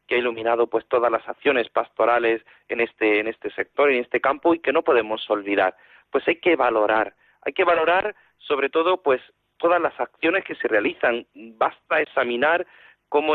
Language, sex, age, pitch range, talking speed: Spanish, male, 40-59, 110-135 Hz, 180 wpm